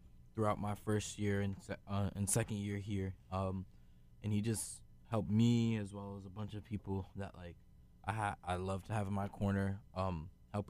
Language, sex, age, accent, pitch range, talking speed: English, male, 20-39, American, 95-105 Hz, 200 wpm